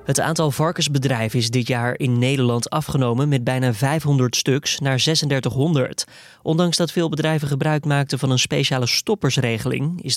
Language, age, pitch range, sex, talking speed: Dutch, 20-39, 120-150 Hz, male, 155 wpm